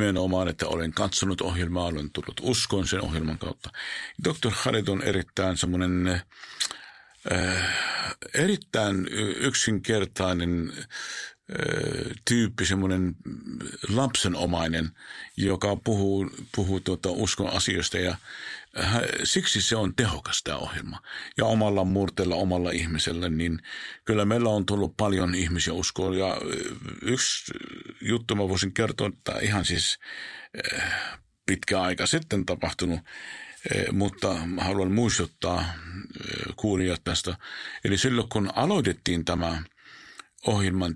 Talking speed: 105 wpm